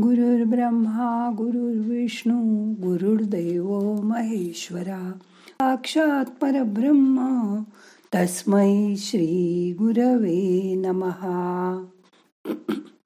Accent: native